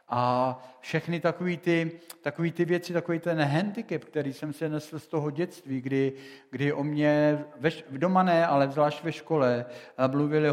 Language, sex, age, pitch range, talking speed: Czech, male, 50-69, 130-155 Hz, 170 wpm